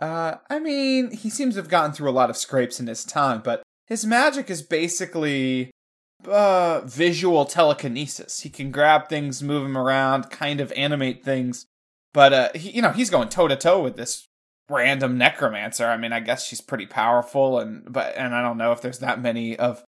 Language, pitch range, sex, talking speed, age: English, 125-170 Hz, male, 200 wpm, 20-39